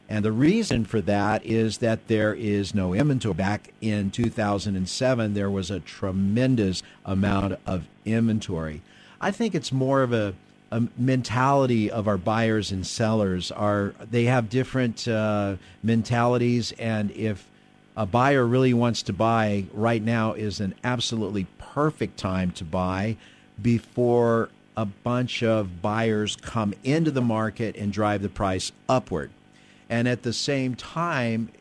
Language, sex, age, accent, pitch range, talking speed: English, male, 50-69, American, 100-120 Hz, 140 wpm